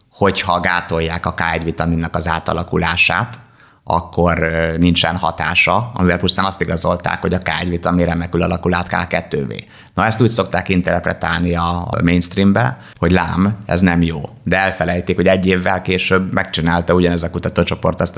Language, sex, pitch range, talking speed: Hungarian, male, 85-105 Hz, 145 wpm